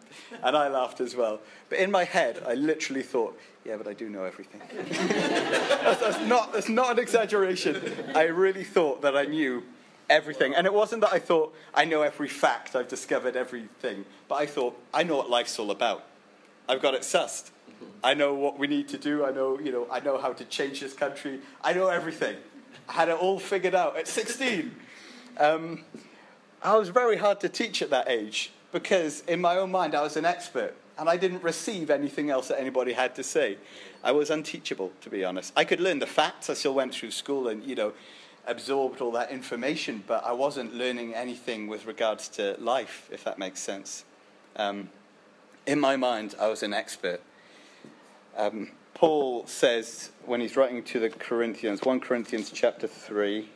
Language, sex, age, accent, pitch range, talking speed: English, male, 40-59, British, 125-185 Hz, 195 wpm